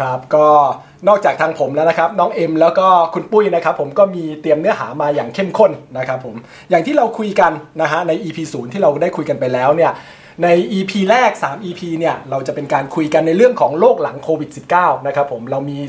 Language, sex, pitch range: Thai, male, 145-195 Hz